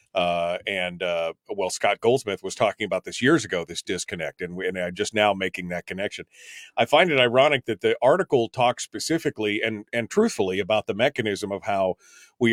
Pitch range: 105-125 Hz